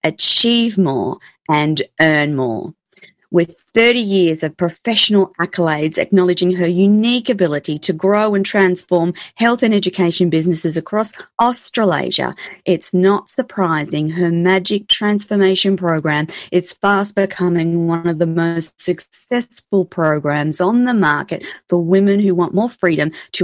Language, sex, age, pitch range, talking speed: English, female, 30-49, 165-200 Hz, 130 wpm